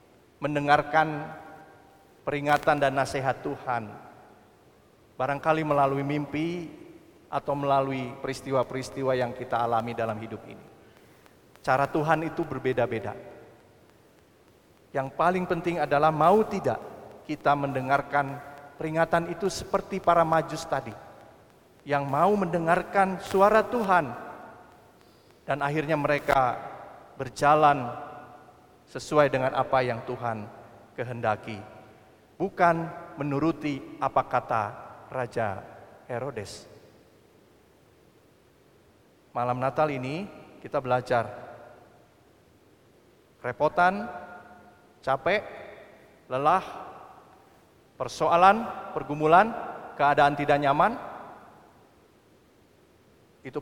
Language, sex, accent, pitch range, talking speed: Indonesian, male, native, 130-160 Hz, 80 wpm